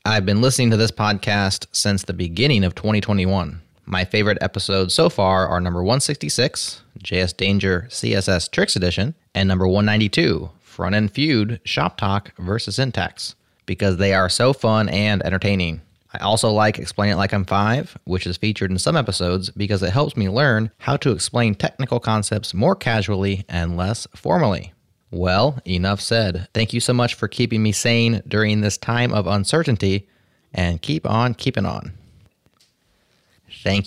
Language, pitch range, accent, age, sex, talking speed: English, 90-110 Hz, American, 30-49, male, 165 wpm